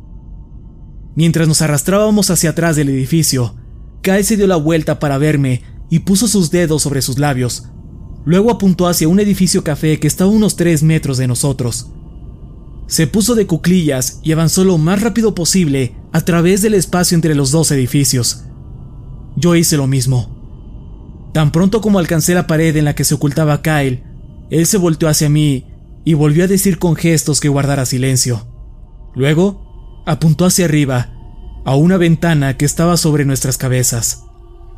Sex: male